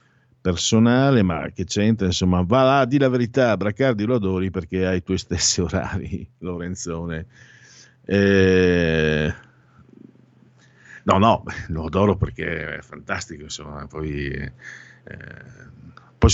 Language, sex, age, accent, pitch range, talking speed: Italian, male, 50-69, native, 85-110 Hz, 115 wpm